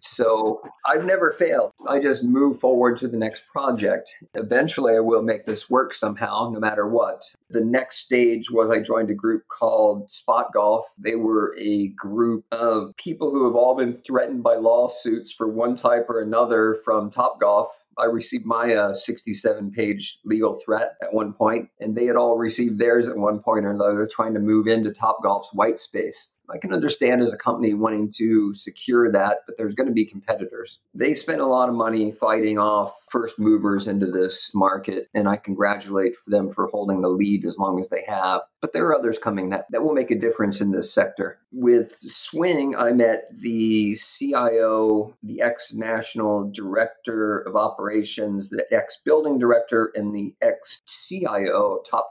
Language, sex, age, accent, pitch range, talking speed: English, male, 40-59, American, 105-120 Hz, 180 wpm